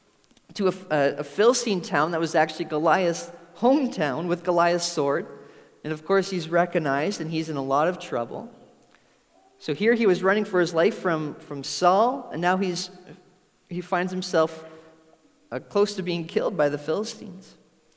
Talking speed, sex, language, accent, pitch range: 170 wpm, male, English, American, 165-220 Hz